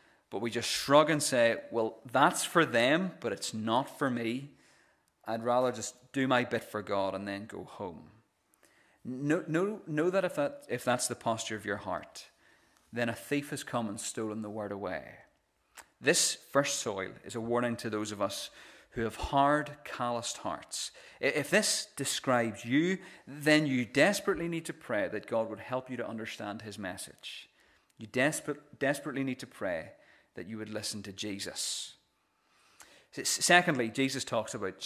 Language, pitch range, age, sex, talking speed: English, 110-145 Hz, 30-49, male, 170 wpm